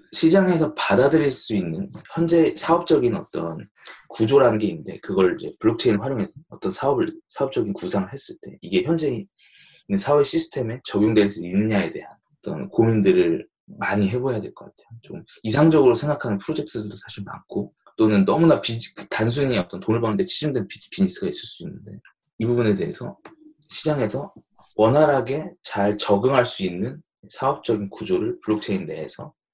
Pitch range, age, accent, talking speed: 105-170 Hz, 20-39, Korean, 135 wpm